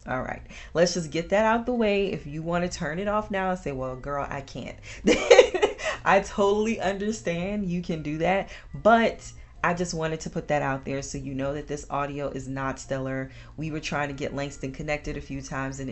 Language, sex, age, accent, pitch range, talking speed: English, female, 30-49, American, 135-175 Hz, 220 wpm